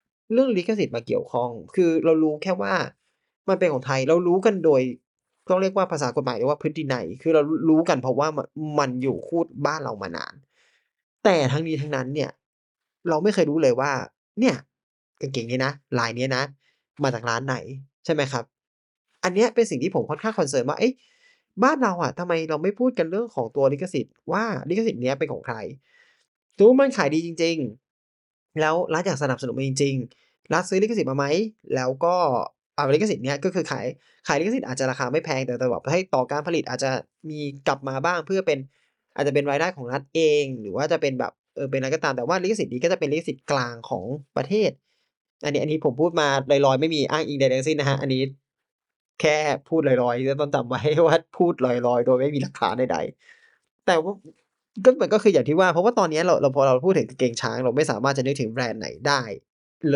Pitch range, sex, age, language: 135-180 Hz, male, 20-39, Thai